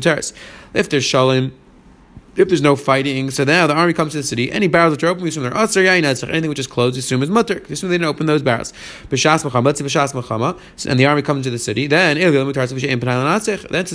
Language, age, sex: English, 30-49, male